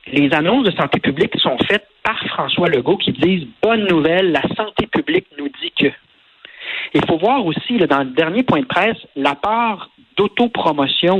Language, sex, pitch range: French, male, 135-180 Hz